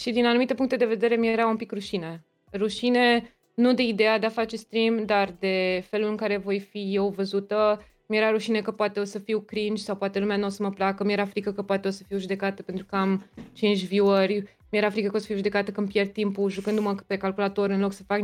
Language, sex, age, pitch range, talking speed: Romanian, female, 20-39, 200-250 Hz, 250 wpm